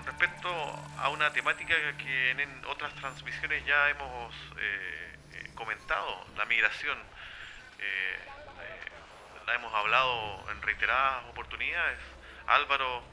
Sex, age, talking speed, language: male, 30-49, 110 wpm, Spanish